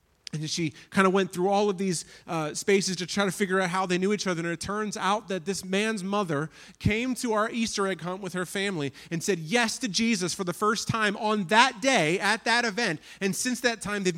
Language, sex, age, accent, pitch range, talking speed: English, male, 40-59, American, 170-230 Hz, 245 wpm